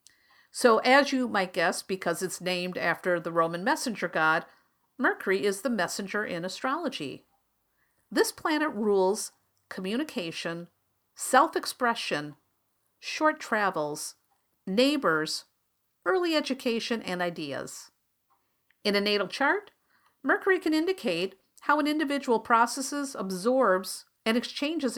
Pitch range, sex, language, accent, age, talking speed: 185-275 Hz, female, English, American, 50-69, 110 wpm